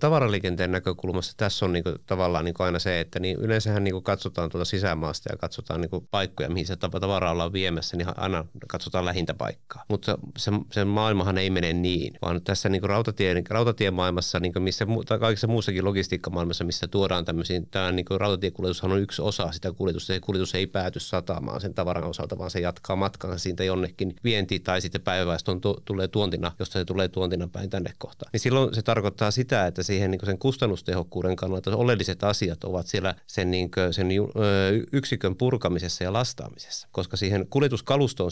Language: Finnish